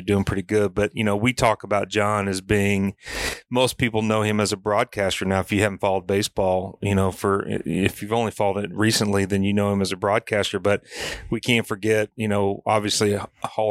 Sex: male